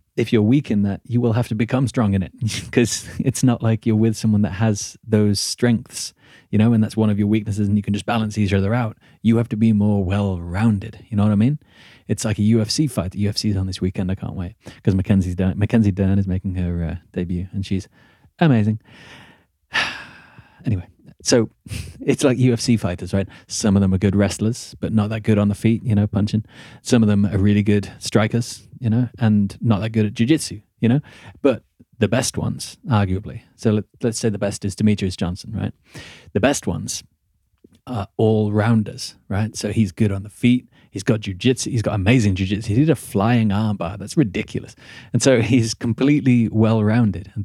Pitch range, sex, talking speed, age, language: 100-120 Hz, male, 205 wpm, 30-49, English